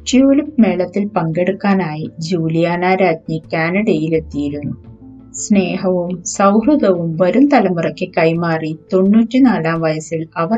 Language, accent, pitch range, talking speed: Malayalam, native, 160-195 Hz, 80 wpm